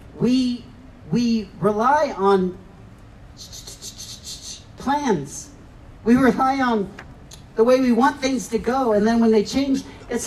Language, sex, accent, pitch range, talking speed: English, male, American, 180-235 Hz, 140 wpm